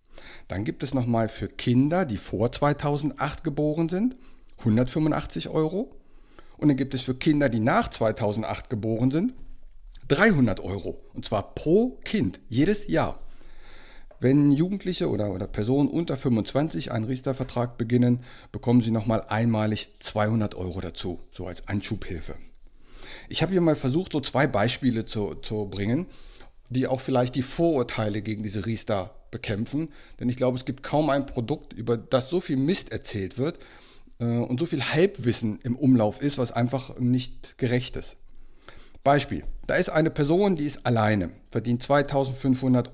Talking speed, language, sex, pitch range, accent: 150 wpm, German, male, 110-145 Hz, German